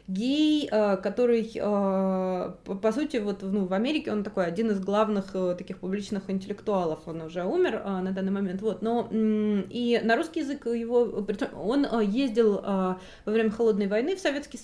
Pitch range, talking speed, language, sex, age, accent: 200-245 Hz, 150 wpm, Russian, female, 20-39, native